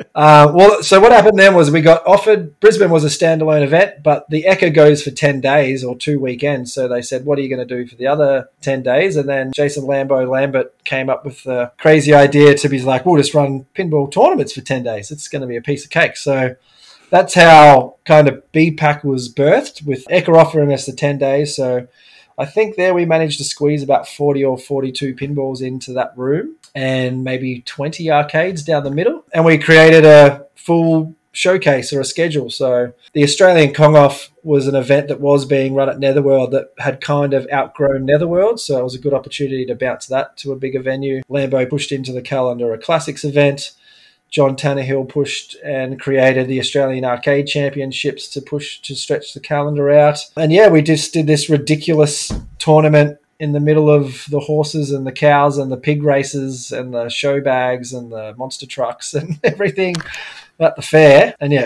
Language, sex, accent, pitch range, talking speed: English, male, Australian, 135-155 Hz, 200 wpm